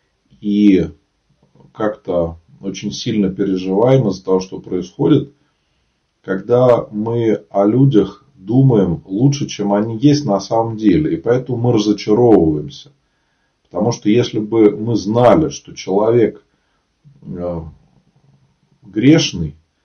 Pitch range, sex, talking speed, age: 95-120 Hz, male, 105 wpm, 40-59